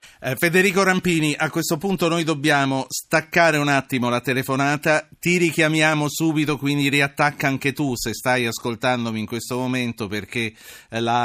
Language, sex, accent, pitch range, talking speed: Italian, male, native, 100-130 Hz, 145 wpm